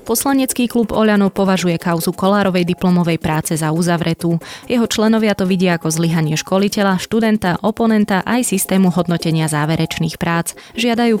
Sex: female